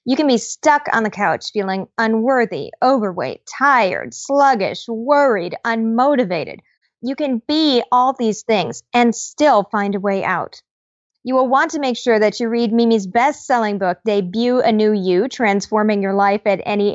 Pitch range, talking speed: 205-255 Hz, 165 wpm